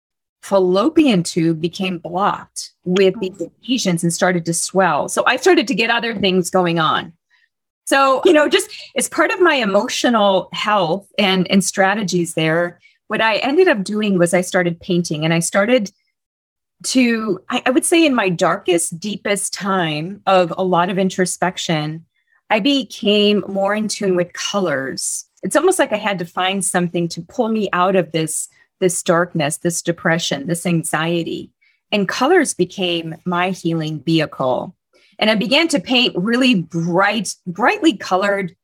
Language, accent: English, American